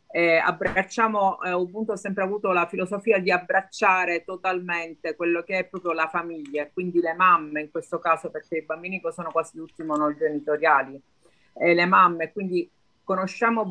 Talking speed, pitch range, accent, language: 160 wpm, 165-200 Hz, native, Italian